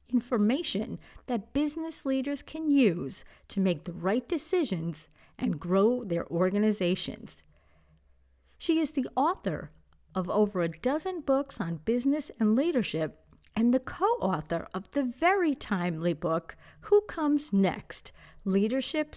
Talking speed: 125 wpm